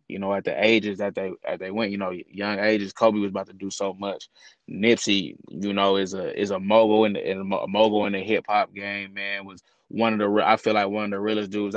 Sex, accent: male, American